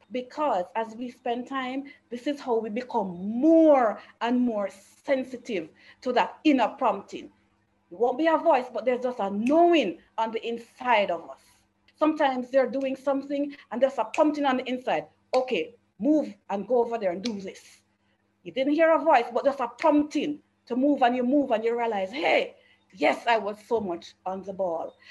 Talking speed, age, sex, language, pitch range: 190 wpm, 40-59, female, English, 195-280 Hz